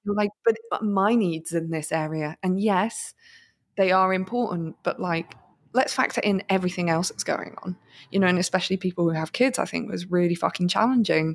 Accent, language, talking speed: British, English, 195 wpm